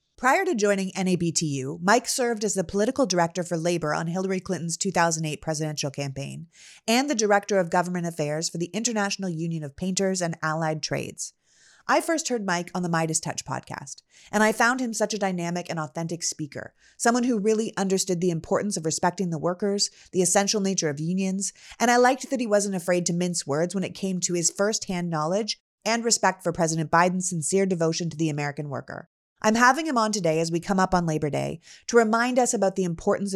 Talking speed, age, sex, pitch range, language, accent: 205 wpm, 30-49, female, 165-205 Hz, English, American